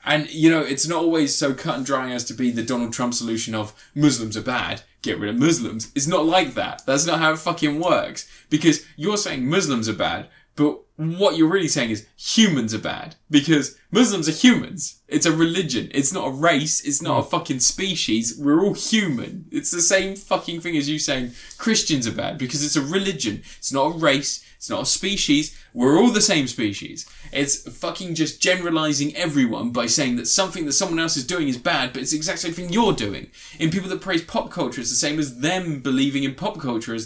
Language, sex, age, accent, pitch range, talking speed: English, male, 20-39, British, 125-170 Hz, 220 wpm